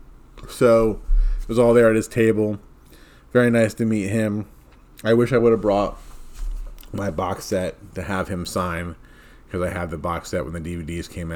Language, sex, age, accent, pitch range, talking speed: English, male, 30-49, American, 80-105 Hz, 190 wpm